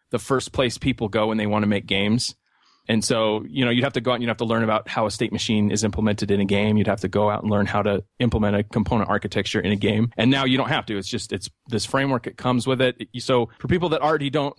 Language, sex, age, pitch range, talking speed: English, male, 30-49, 105-125 Hz, 295 wpm